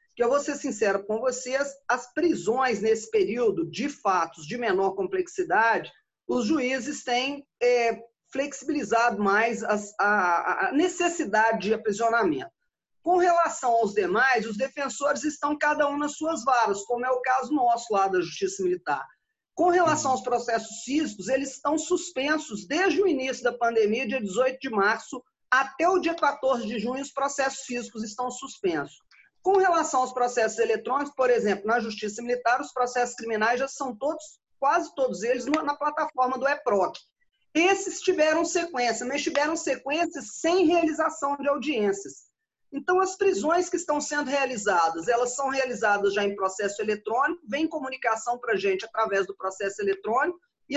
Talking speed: 155 wpm